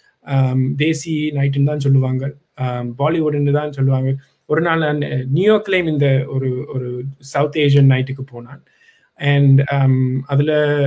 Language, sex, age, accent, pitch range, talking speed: Tamil, male, 20-39, native, 135-170 Hz, 135 wpm